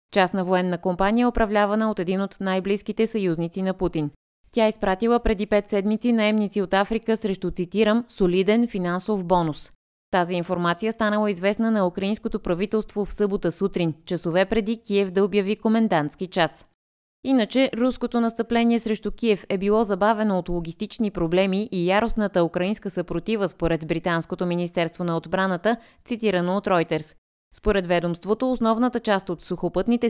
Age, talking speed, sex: 20-39, 140 wpm, female